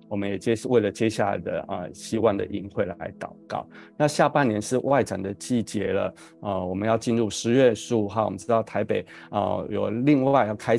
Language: Chinese